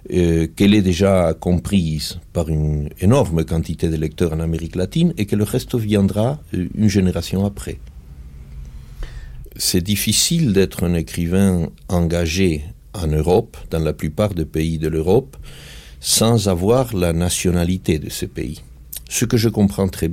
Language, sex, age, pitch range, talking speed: French, male, 60-79, 80-95 Hz, 145 wpm